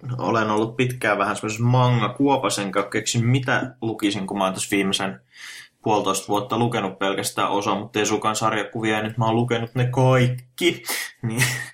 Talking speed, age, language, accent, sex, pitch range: 165 wpm, 20-39, Finnish, native, male, 105-125 Hz